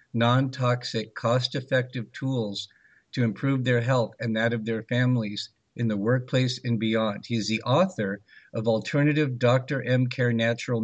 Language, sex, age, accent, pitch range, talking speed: English, male, 50-69, American, 105-125 Hz, 145 wpm